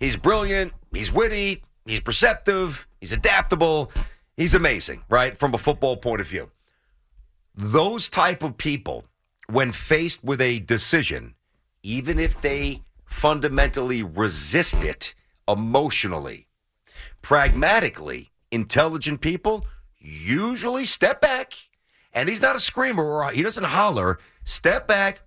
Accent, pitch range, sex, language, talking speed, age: American, 110-165 Hz, male, English, 115 wpm, 50-69